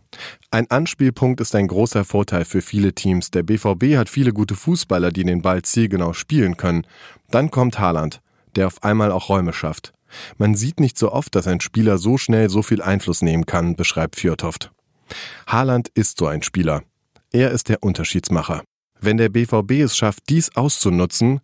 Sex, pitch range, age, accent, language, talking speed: male, 90-115 Hz, 30-49, German, German, 175 wpm